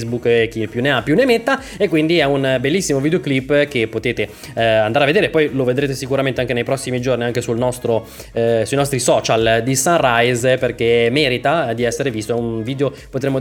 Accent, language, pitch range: native, Italian, 130-180 Hz